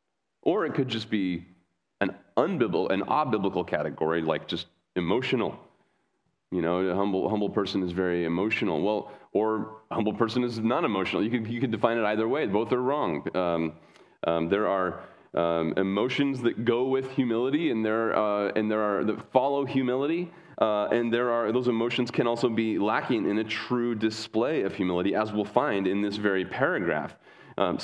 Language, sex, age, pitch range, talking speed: English, male, 30-49, 100-120 Hz, 180 wpm